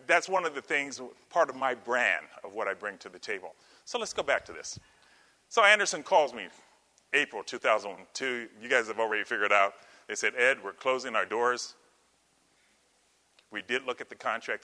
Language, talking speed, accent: English, 195 wpm, American